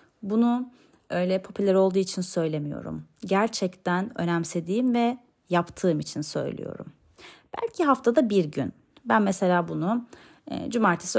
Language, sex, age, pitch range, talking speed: Turkish, female, 30-49, 180-245 Hz, 105 wpm